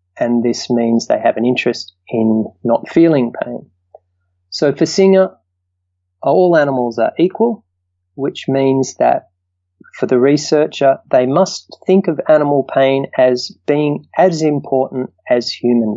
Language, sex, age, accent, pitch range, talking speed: English, male, 30-49, Australian, 105-140 Hz, 135 wpm